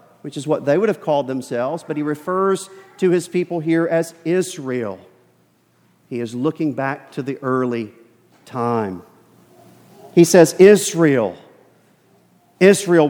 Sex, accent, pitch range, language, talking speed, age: male, American, 155-200 Hz, English, 135 wpm, 40-59